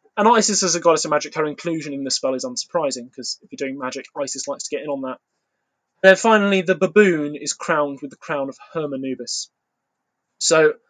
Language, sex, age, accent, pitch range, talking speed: English, male, 20-39, British, 135-170 Hz, 220 wpm